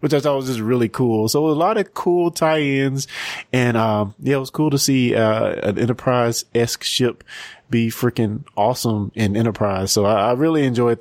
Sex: male